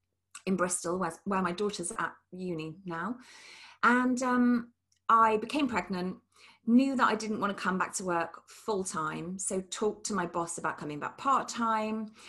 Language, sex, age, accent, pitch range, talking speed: English, female, 30-49, British, 170-235 Hz, 160 wpm